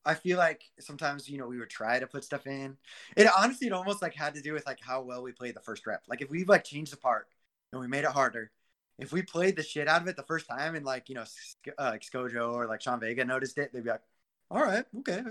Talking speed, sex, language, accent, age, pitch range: 280 wpm, male, English, American, 20-39, 120-165 Hz